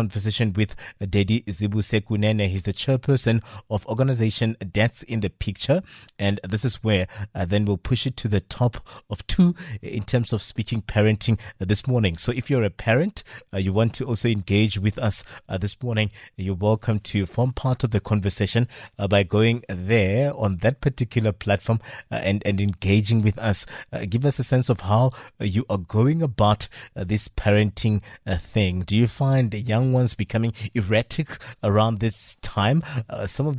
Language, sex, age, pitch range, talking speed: English, male, 30-49, 105-120 Hz, 185 wpm